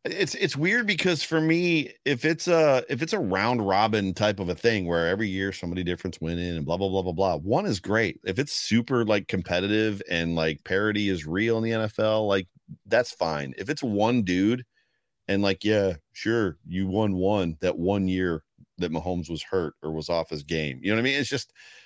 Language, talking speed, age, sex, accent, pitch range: English, 220 wpm, 40-59, male, American, 95-120 Hz